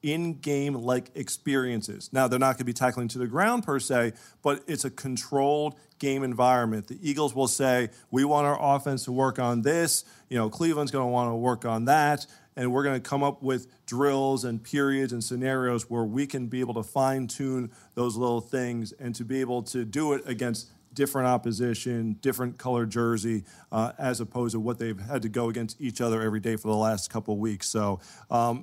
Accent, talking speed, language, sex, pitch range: American, 205 wpm, English, male, 115-135 Hz